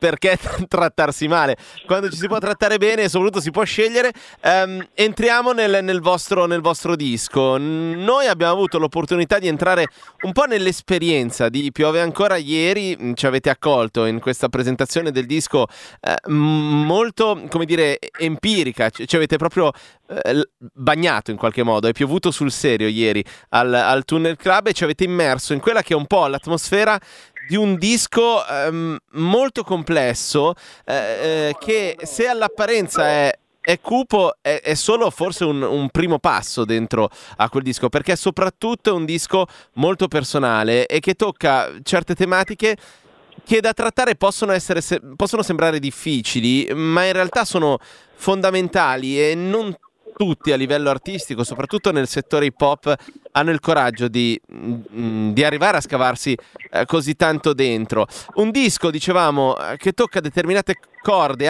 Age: 30-49